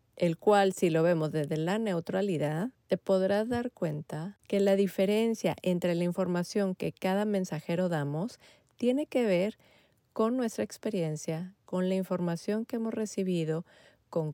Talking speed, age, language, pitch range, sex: 145 wpm, 30-49, Spanish, 170-210 Hz, female